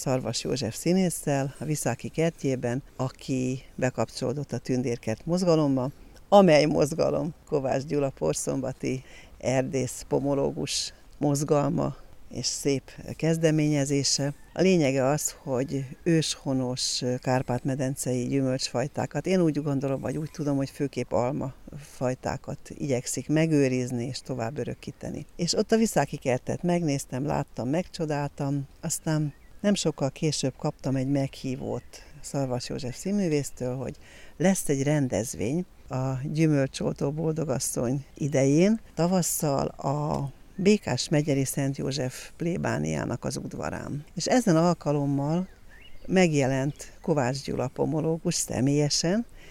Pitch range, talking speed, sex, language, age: 130-160 Hz, 105 wpm, female, Hungarian, 60-79